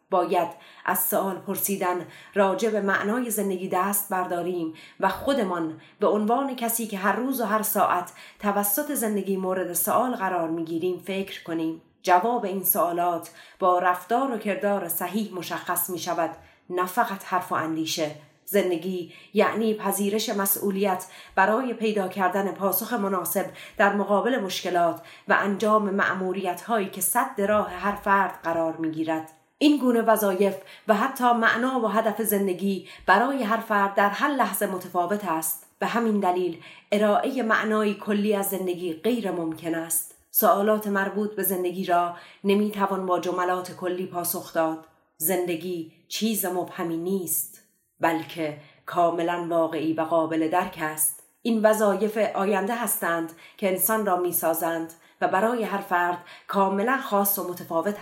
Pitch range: 175-210 Hz